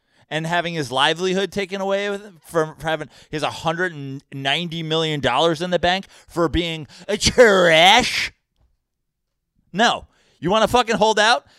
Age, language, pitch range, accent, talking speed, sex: 30-49, English, 155-215 Hz, American, 150 wpm, male